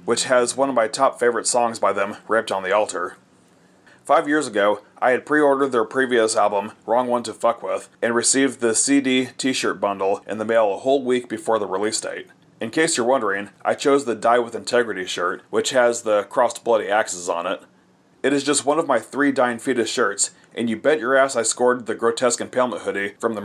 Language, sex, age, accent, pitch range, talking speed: English, male, 30-49, American, 110-135 Hz, 220 wpm